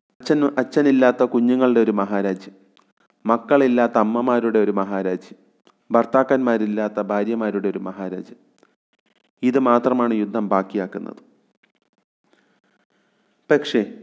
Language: Malayalam